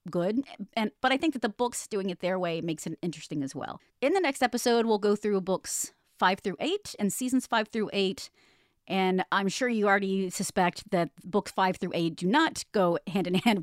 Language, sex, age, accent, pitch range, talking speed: English, female, 30-49, American, 185-230 Hz, 220 wpm